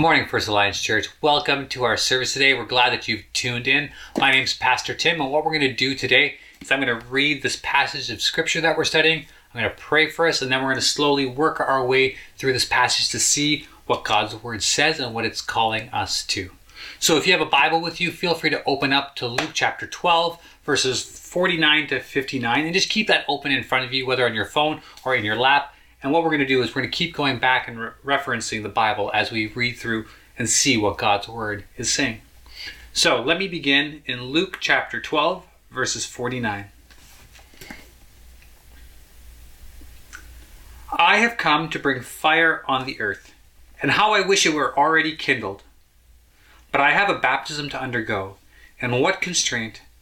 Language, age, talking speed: English, 30-49, 205 wpm